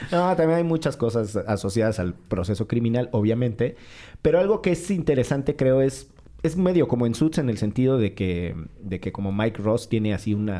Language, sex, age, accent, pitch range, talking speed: Spanish, male, 40-59, Mexican, 105-125 Hz, 200 wpm